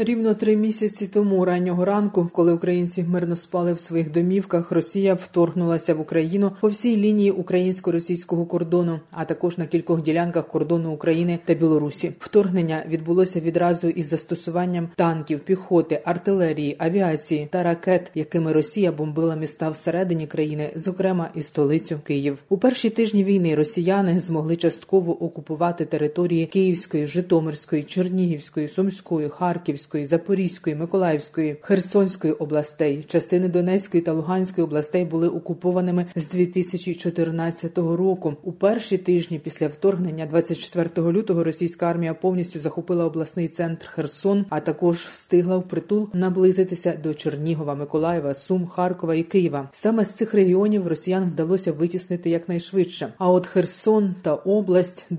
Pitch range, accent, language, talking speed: 160-185 Hz, native, Ukrainian, 130 wpm